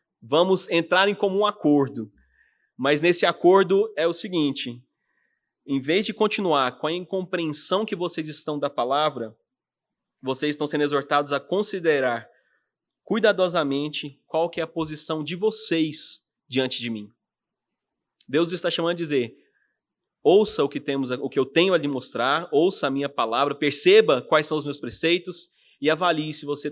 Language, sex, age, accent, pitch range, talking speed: Portuguese, male, 20-39, Brazilian, 140-175 Hz, 155 wpm